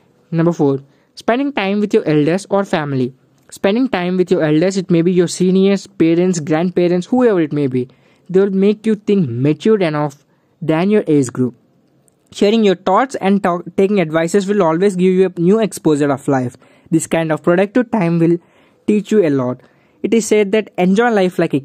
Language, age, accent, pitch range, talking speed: English, 20-39, Indian, 150-200 Hz, 190 wpm